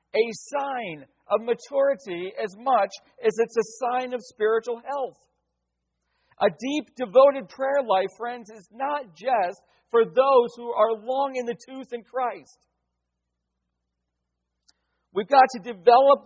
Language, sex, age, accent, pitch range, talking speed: English, male, 50-69, American, 195-255 Hz, 135 wpm